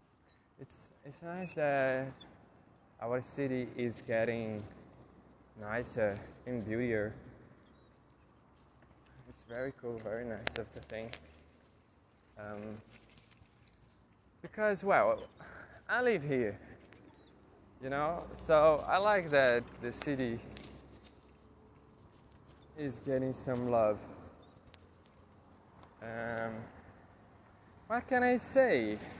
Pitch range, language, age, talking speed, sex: 100-150 Hz, Portuguese, 20-39, 85 wpm, male